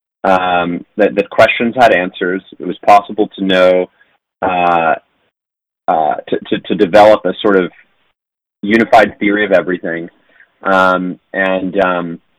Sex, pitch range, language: male, 90-105 Hz, English